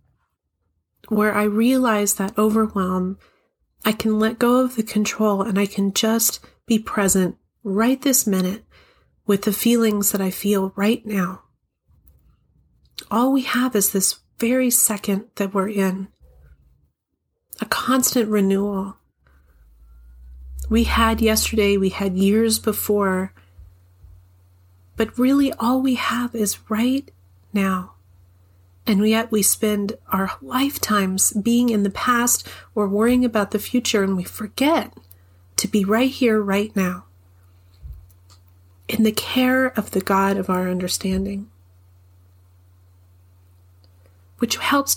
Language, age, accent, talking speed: English, 40-59, American, 125 wpm